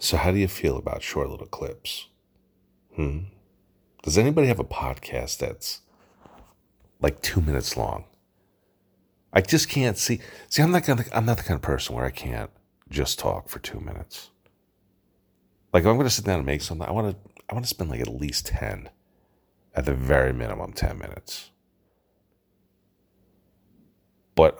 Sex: male